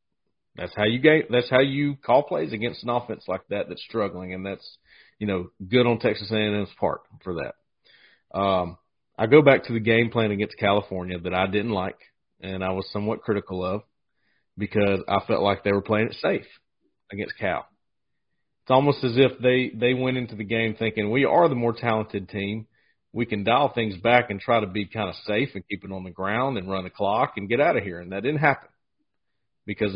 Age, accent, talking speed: 40-59, American, 215 wpm